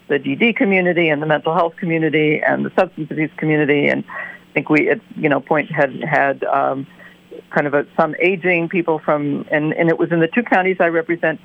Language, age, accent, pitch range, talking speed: English, 50-69, American, 150-180 Hz, 215 wpm